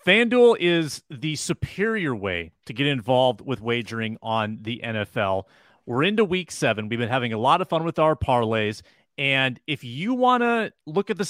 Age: 30-49